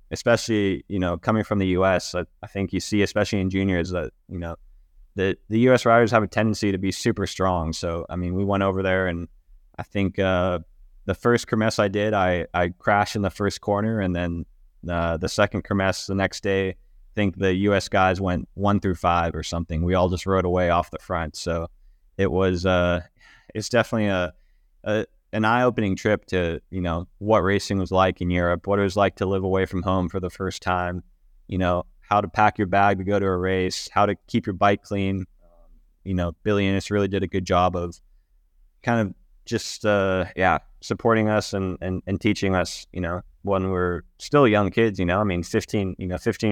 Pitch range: 90-100 Hz